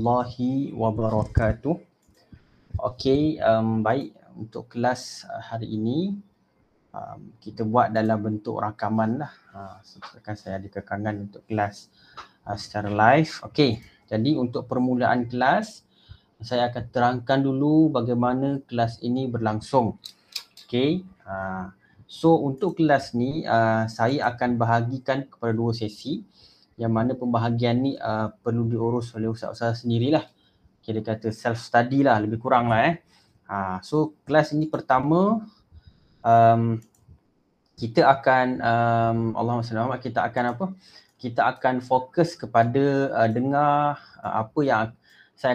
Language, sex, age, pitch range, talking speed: Malay, male, 30-49, 110-135 Hz, 125 wpm